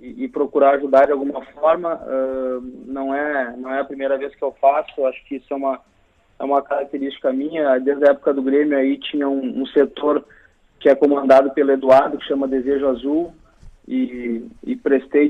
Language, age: Portuguese, 20-39